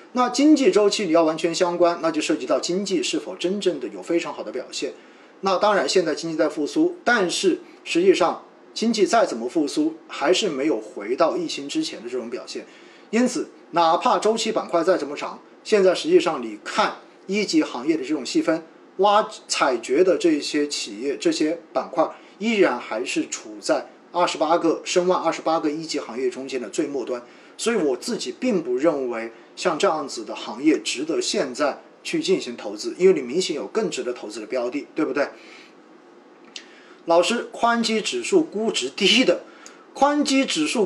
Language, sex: Chinese, male